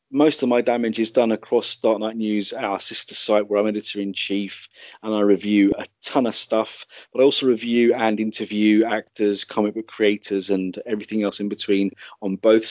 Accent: British